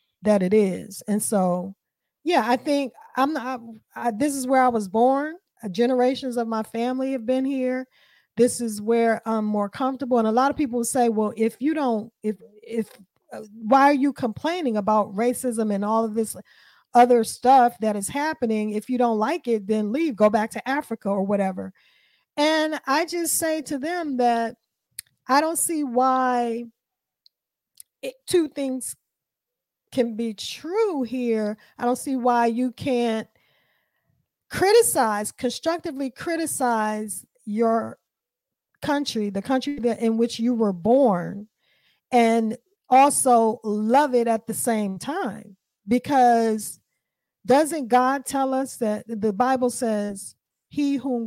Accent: American